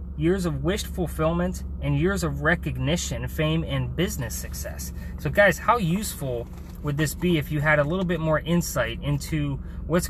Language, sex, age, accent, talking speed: English, male, 20-39, American, 170 wpm